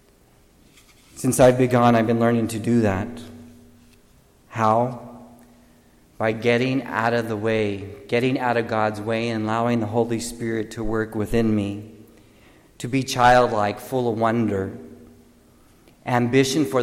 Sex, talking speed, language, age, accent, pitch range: male, 135 wpm, English, 40-59, American, 105-120 Hz